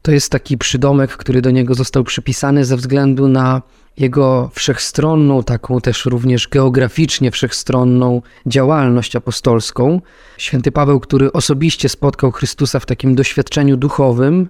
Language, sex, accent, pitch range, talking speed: Polish, male, native, 130-150 Hz, 130 wpm